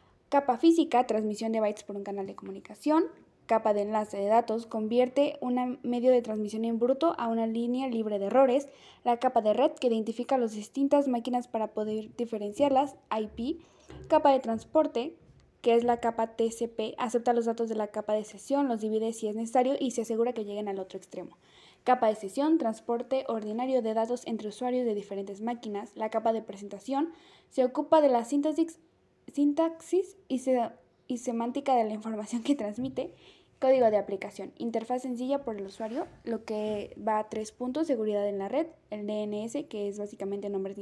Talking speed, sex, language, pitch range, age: 185 wpm, female, Spanish, 215-260 Hz, 10-29